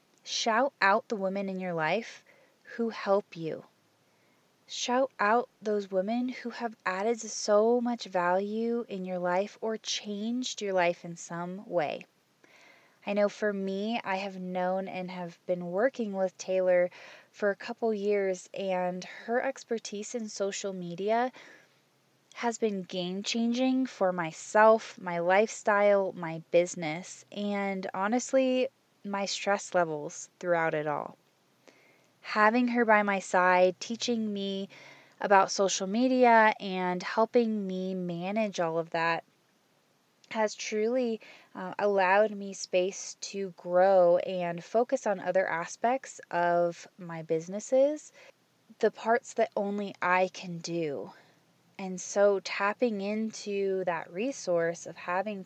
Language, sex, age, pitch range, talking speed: English, female, 20-39, 180-220 Hz, 130 wpm